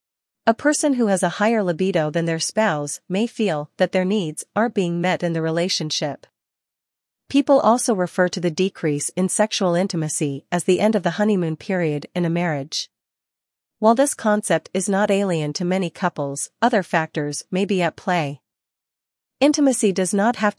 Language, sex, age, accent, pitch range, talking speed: English, female, 40-59, American, 160-205 Hz, 170 wpm